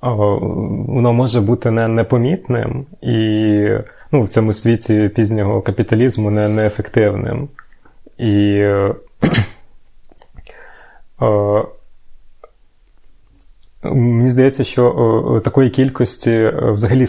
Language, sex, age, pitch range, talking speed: Ukrainian, male, 20-39, 105-120 Hz, 90 wpm